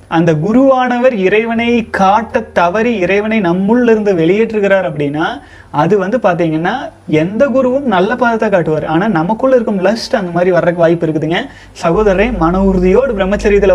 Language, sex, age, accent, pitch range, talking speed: Tamil, male, 30-49, native, 180-225 Hz, 135 wpm